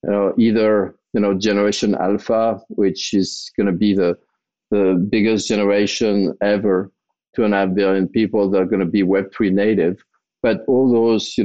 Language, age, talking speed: English, 50-69, 175 wpm